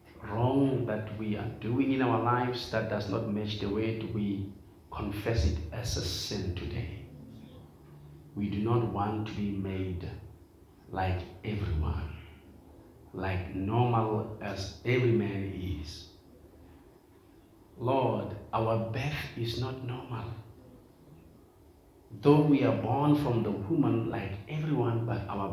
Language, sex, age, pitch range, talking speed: English, male, 50-69, 90-115 Hz, 125 wpm